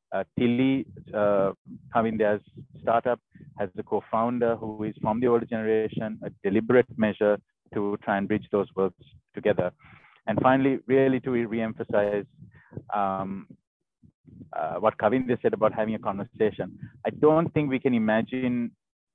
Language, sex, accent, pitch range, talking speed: English, male, Indian, 105-120 Hz, 135 wpm